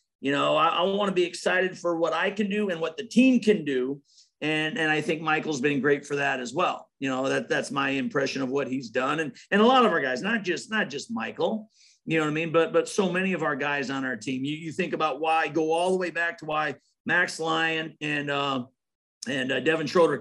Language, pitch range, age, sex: English, 150-185 Hz, 50-69, male